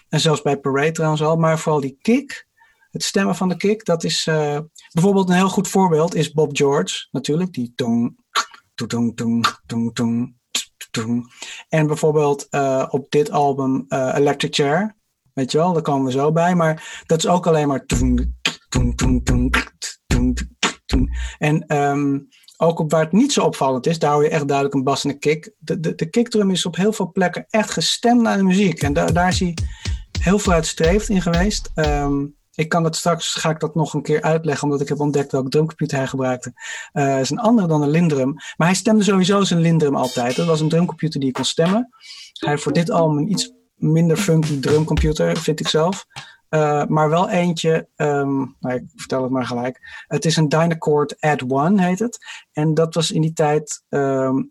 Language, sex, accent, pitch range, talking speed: Dutch, male, Dutch, 140-175 Hz, 195 wpm